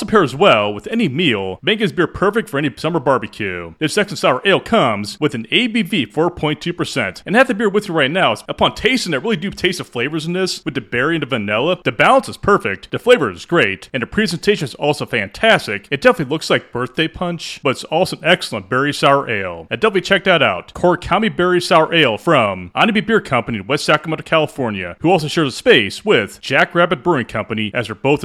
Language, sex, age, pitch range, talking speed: English, male, 30-49, 125-180 Hz, 225 wpm